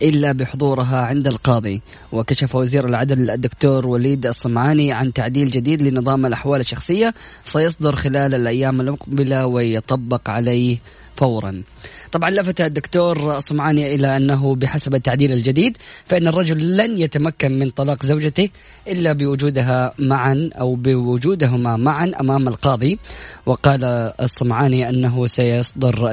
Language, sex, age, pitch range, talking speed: Arabic, female, 20-39, 130-150 Hz, 115 wpm